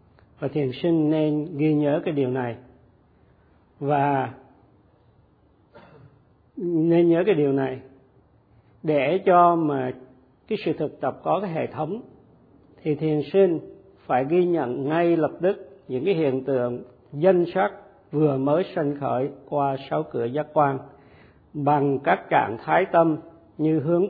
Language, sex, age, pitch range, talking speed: Vietnamese, male, 50-69, 130-160 Hz, 140 wpm